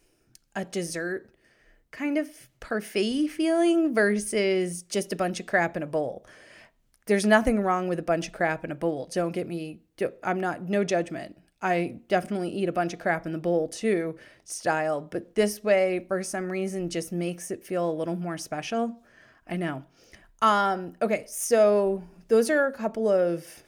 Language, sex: English, female